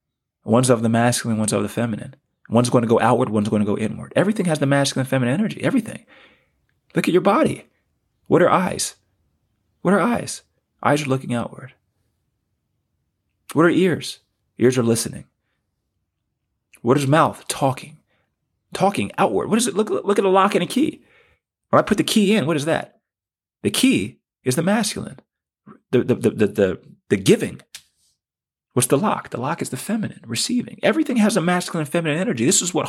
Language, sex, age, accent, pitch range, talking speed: English, male, 30-49, American, 120-175 Hz, 190 wpm